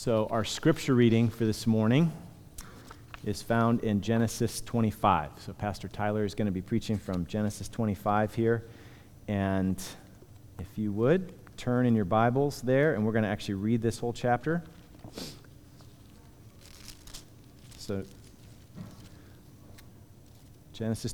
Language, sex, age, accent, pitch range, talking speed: English, male, 40-59, American, 100-120 Hz, 125 wpm